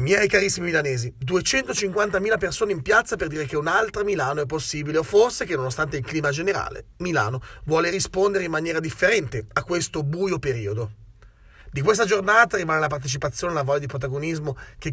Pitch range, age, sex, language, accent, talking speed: 135-195 Hz, 30-49, male, Italian, native, 175 wpm